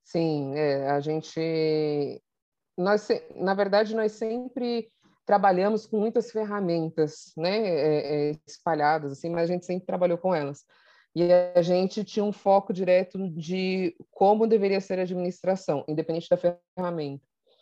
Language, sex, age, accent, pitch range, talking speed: Portuguese, female, 20-39, Brazilian, 160-200 Hz, 125 wpm